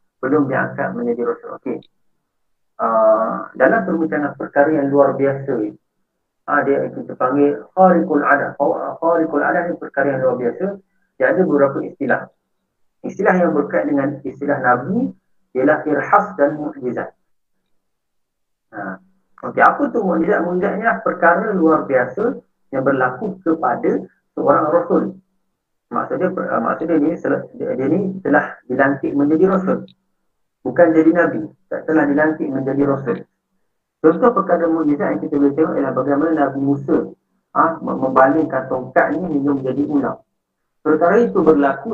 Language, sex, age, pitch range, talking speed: Malay, male, 50-69, 140-170 Hz, 140 wpm